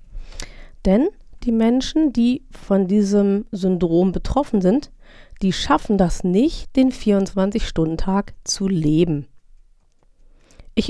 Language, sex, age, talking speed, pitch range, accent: German, female, 30-49, 100 wpm, 180-230 Hz, German